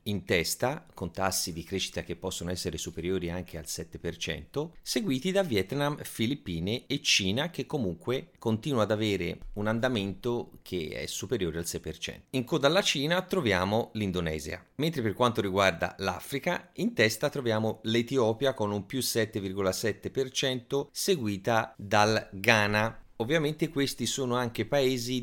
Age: 30-49